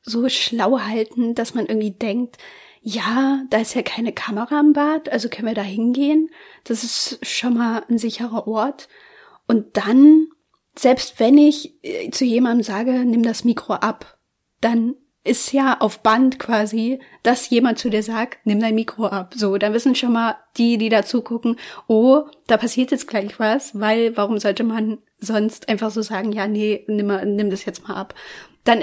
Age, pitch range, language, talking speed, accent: 30-49, 220-265 Hz, German, 180 wpm, German